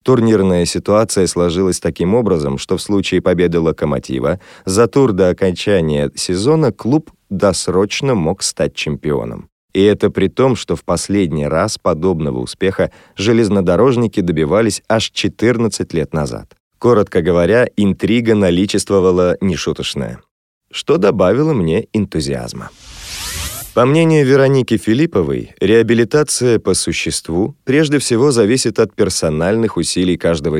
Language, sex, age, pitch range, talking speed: Russian, male, 30-49, 85-115 Hz, 115 wpm